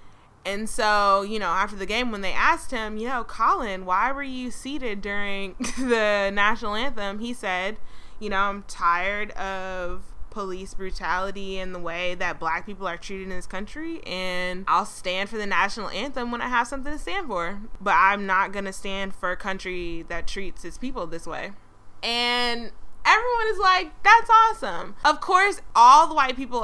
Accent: American